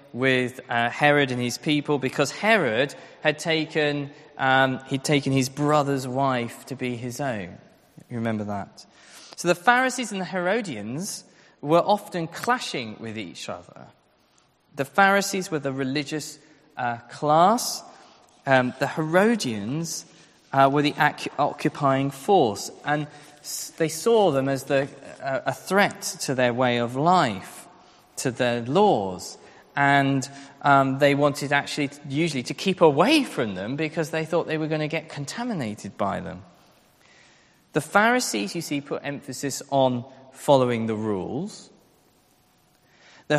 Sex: male